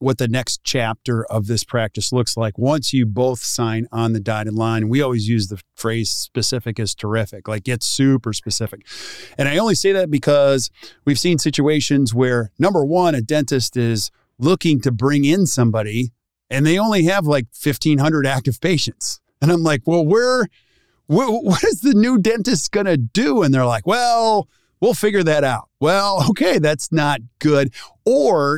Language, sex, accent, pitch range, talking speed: English, male, American, 120-150 Hz, 180 wpm